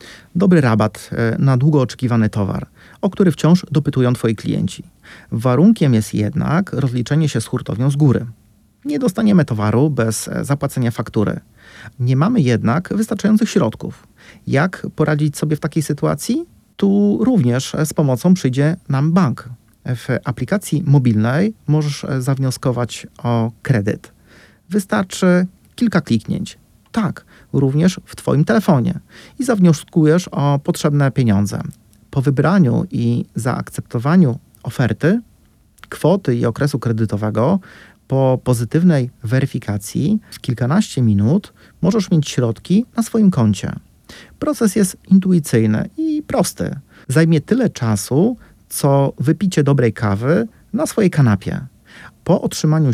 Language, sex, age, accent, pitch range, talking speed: Polish, male, 40-59, native, 120-185 Hz, 115 wpm